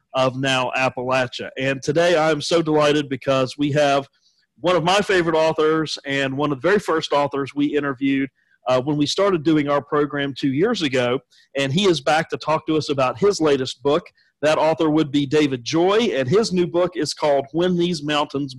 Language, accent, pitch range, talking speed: English, American, 140-165 Hz, 200 wpm